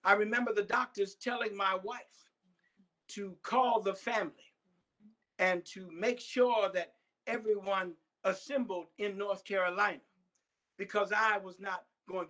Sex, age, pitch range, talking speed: male, 50-69, 190-255 Hz, 125 wpm